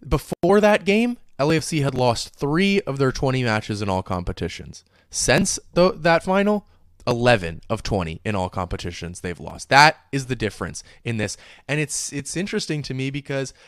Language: English